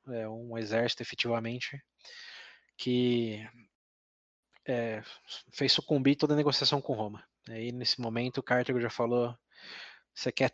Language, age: Portuguese, 20-39